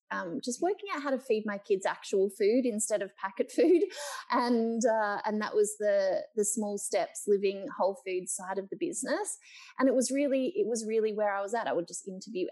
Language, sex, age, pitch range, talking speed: English, female, 20-39, 200-265 Hz, 220 wpm